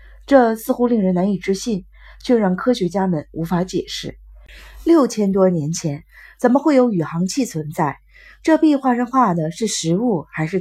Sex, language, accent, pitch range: female, Chinese, native, 160-240 Hz